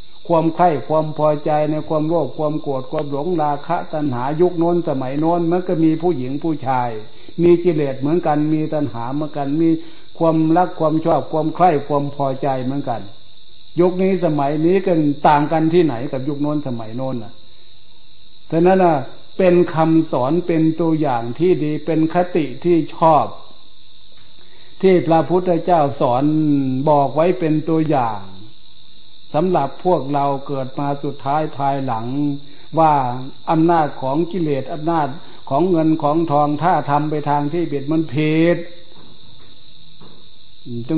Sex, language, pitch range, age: male, Thai, 135-165 Hz, 60-79